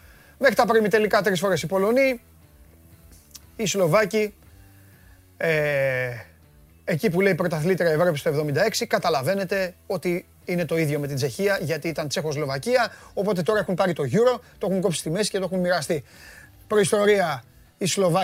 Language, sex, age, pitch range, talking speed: Greek, male, 30-49, 165-225 Hz, 95 wpm